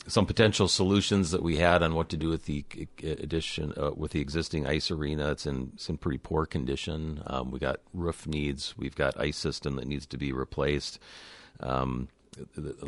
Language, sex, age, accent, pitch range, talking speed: English, male, 40-59, American, 65-80 Hz, 190 wpm